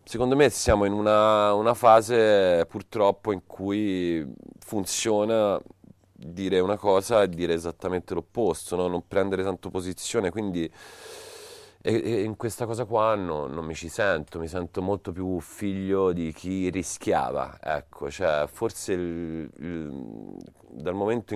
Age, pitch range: 40-59, 85-110 Hz